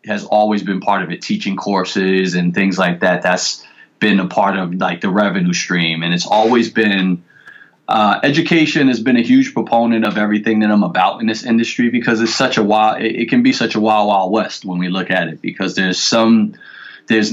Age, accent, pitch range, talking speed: 30-49, American, 90-110 Hz, 220 wpm